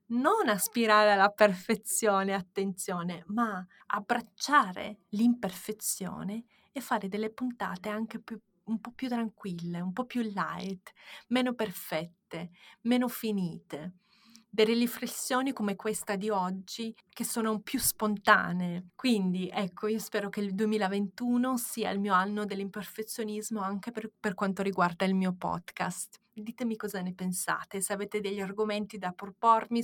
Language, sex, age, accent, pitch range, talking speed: Italian, female, 30-49, native, 185-220 Hz, 130 wpm